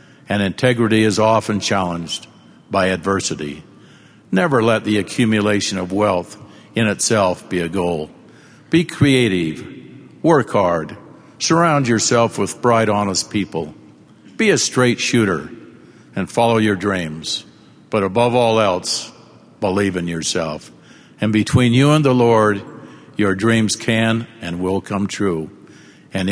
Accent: American